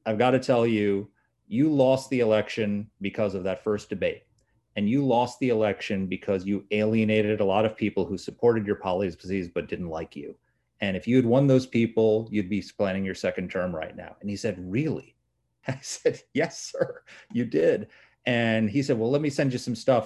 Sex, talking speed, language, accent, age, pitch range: male, 205 wpm, English, American, 30-49, 105-130 Hz